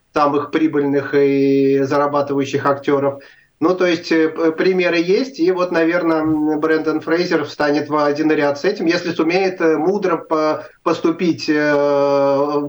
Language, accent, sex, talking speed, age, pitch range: Russian, native, male, 125 wpm, 30-49, 140-170 Hz